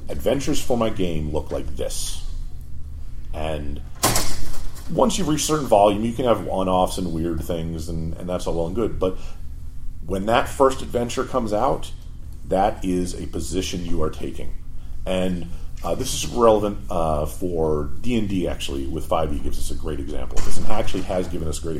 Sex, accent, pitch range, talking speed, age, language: male, American, 70-95 Hz, 180 wpm, 40-59, English